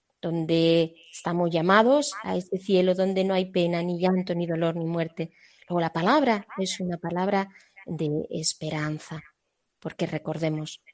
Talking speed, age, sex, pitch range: 145 wpm, 30-49, female, 160-190 Hz